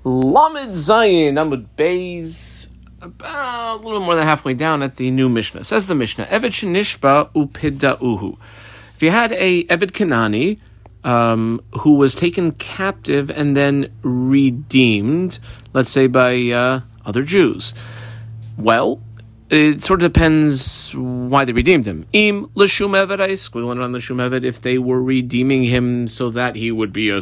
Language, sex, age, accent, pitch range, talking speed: English, male, 40-59, American, 110-155 Hz, 140 wpm